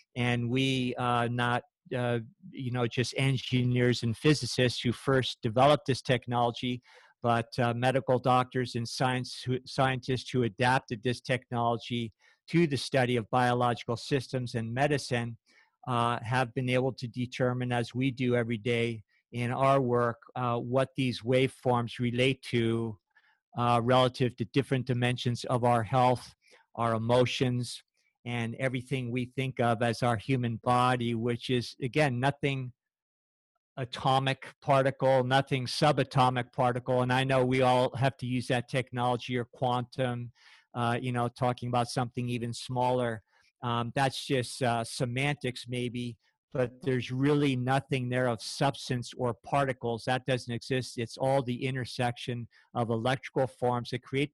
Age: 50-69